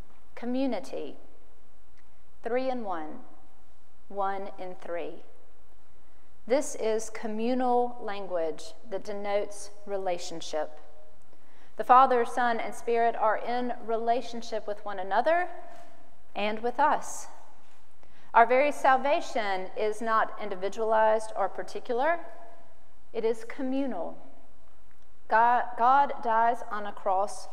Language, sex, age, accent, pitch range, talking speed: English, female, 40-59, American, 190-240 Hz, 100 wpm